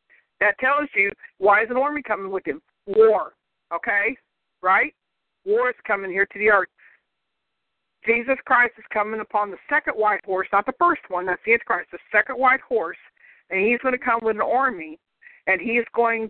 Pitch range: 205-255 Hz